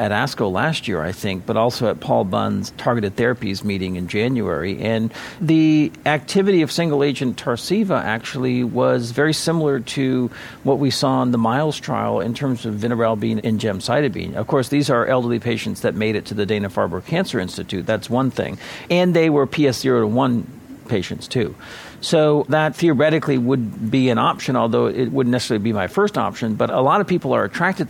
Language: English